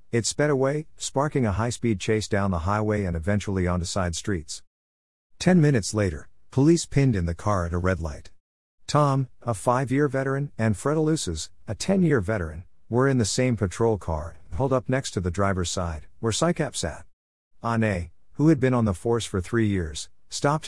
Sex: male